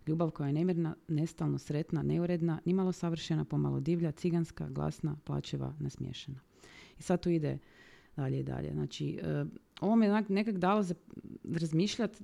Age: 30-49